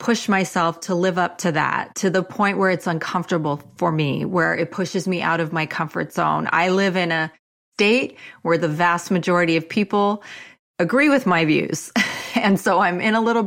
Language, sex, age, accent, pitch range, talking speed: English, female, 30-49, American, 170-210 Hz, 200 wpm